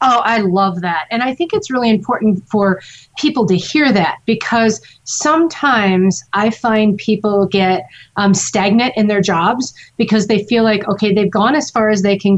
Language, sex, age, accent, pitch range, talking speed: English, female, 40-59, American, 195-240 Hz, 185 wpm